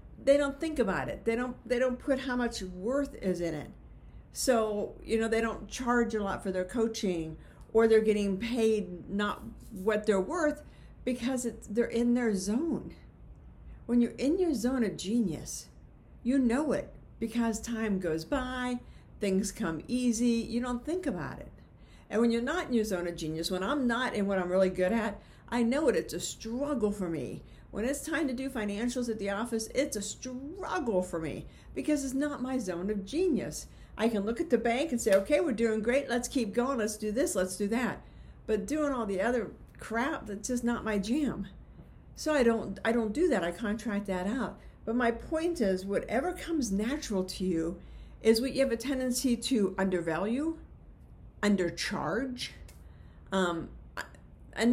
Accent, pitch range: American, 200-255 Hz